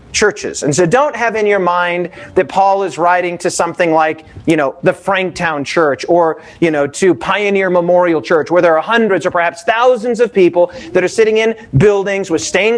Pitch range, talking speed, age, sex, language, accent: 175-235 Hz, 200 wpm, 40-59, male, English, American